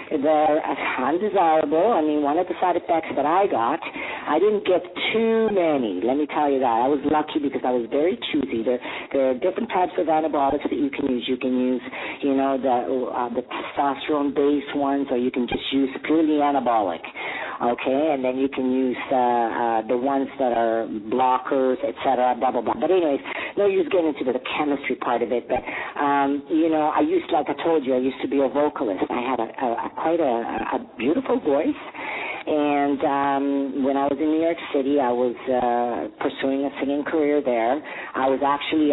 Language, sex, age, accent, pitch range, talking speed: English, female, 50-69, American, 125-155 Hz, 205 wpm